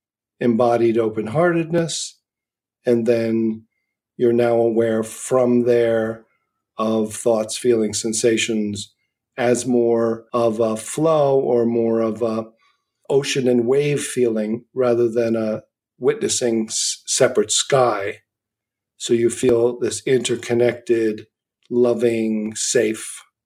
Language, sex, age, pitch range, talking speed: English, male, 50-69, 115-125 Hz, 100 wpm